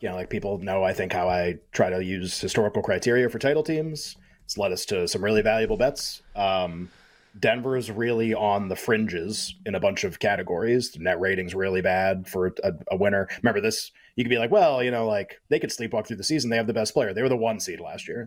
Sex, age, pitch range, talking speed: male, 30-49, 100-130 Hz, 245 wpm